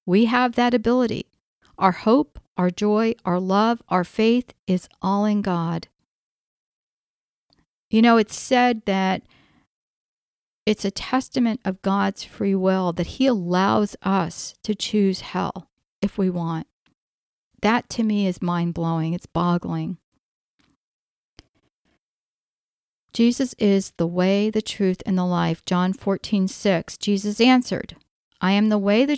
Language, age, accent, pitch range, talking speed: English, 50-69, American, 185-240 Hz, 130 wpm